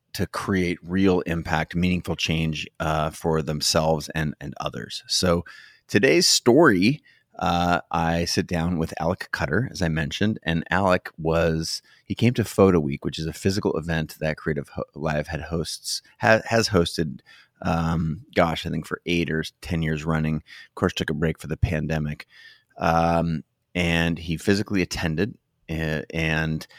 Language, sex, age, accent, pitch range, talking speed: English, male, 30-49, American, 80-90 Hz, 160 wpm